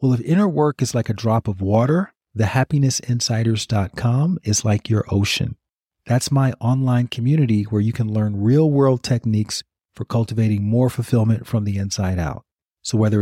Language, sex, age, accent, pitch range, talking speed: English, male, 40-59, American, 105-130 Hz, 165 wpm